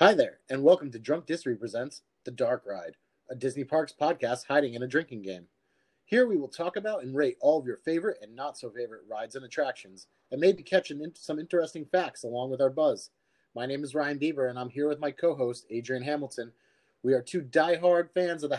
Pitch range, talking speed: 140-180 Hz, 215 wpm